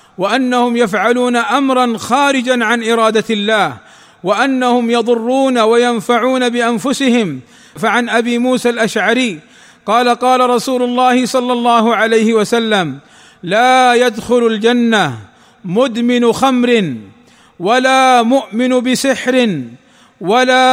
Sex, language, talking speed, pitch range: male, Arabic, 95 wpm, 225-250 Hz